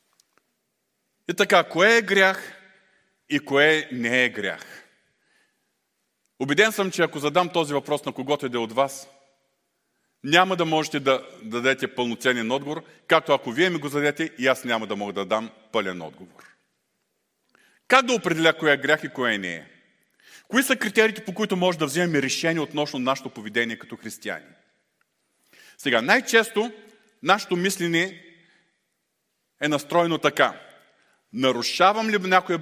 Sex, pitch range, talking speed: male, 135-190 Hz, 150 wpm